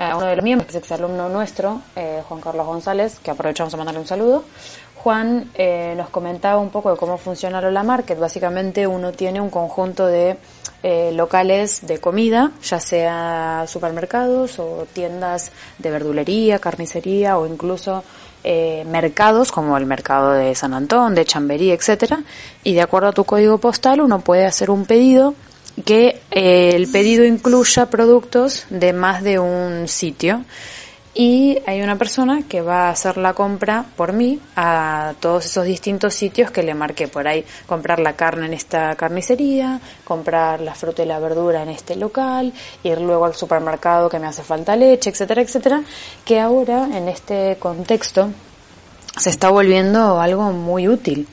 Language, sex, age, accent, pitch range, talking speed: Spanish, female, 20-39, Argentinian, 170-220 Hz, 165 wpm